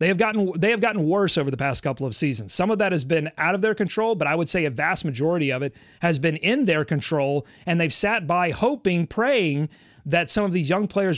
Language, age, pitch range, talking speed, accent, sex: English, 30-49, 145-200 Hz, 245 wpm, American, male